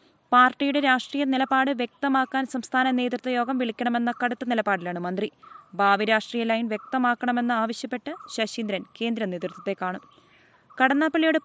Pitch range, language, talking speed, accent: 215-260 Hz, Malayalam, 105 wpm, native